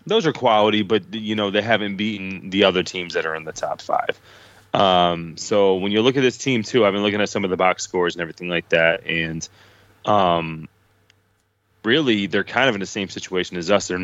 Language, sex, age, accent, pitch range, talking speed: English, male, 20-39, American, 90-105 Hz, 225 wpm